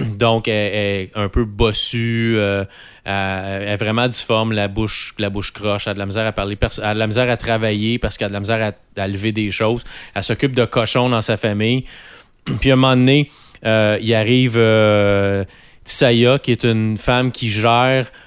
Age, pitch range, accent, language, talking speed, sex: 30-49, 105-120 Hz, Canadian, French, 195 wpm, male